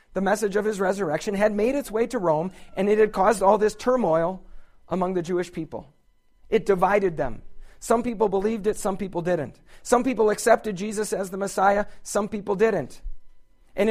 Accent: American